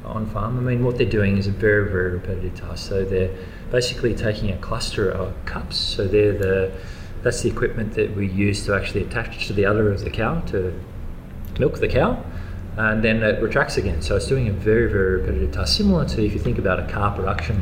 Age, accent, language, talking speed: 20-39, Australian, English, 220 wpm